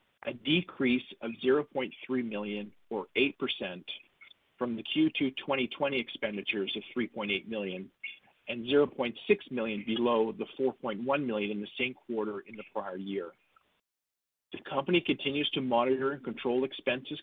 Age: 40-59